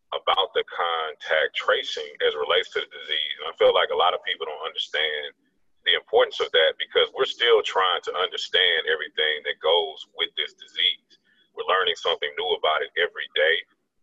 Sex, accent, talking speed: male, American, 190 wpm